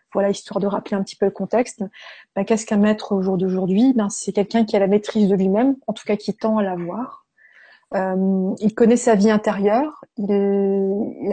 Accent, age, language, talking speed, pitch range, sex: French, 20-39, French, 215 wpm, 200-225 Hz, female